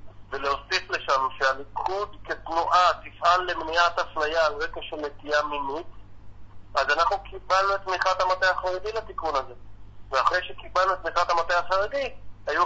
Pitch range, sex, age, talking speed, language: 120-185 Hz, male, 50-69, 135 wpm, Hebrew